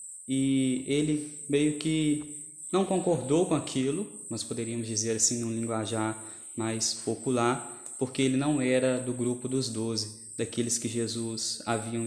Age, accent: 20-39, Brazilian